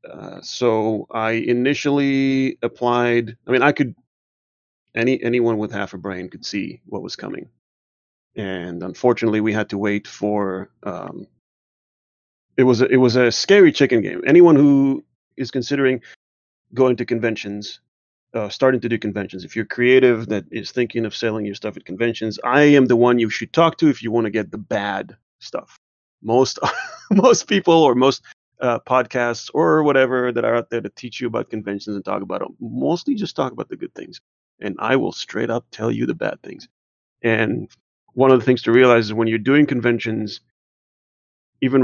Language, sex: English, male